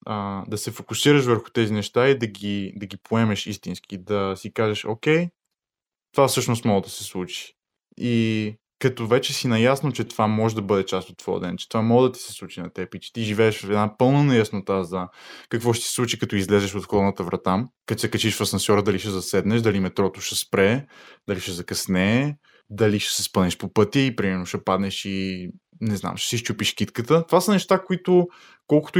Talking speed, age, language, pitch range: 210 wpm, 20-39, Bulgarian, 100-130 Hz